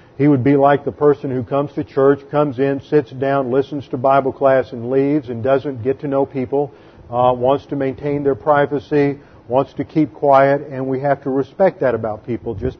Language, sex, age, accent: English, male, 50-69, American